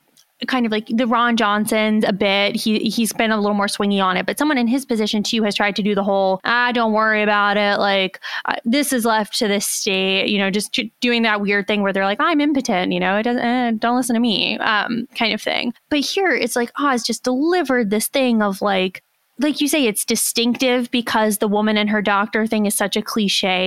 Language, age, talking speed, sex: English, 20-39, 245 wpm, female